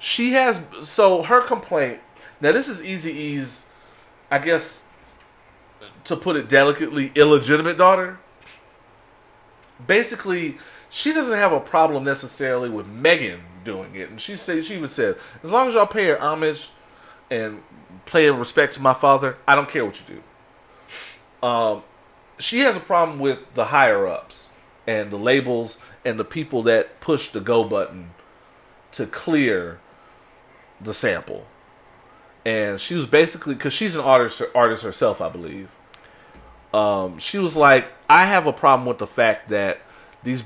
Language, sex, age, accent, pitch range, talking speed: English, male, 30-49, American, 115-175 Hz, 155 wpm